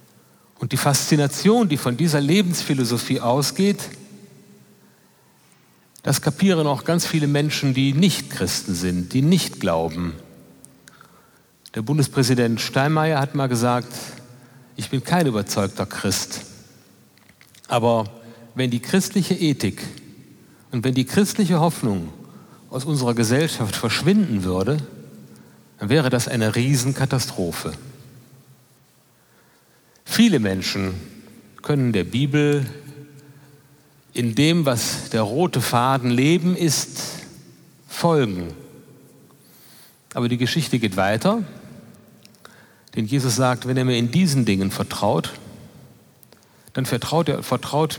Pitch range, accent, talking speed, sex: 120-150 Hz, German, 105 wpm, male